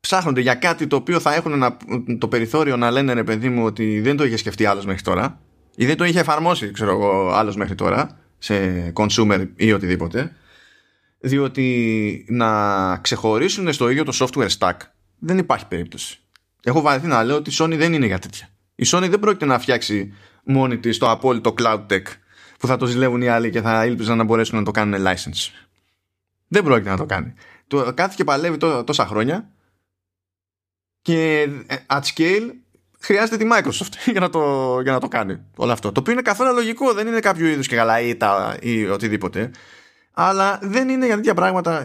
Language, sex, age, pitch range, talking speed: Greek, male, 20-39, 105-160 Hz, 185 wpm